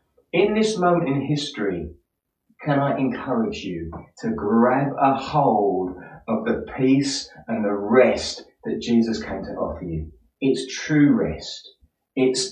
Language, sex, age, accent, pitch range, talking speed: English, male, 30-49, British, 95-140 Hz, 140 wpm